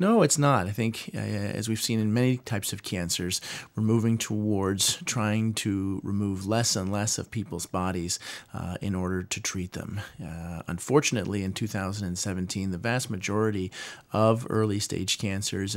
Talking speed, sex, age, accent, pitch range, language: 160 wpm, male, 30-49, American, 90-110 Hz, English